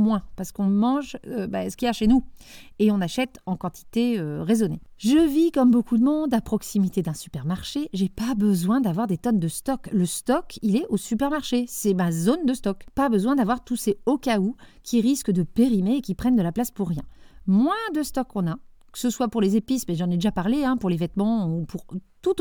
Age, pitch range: 40-59, 190-255 Hz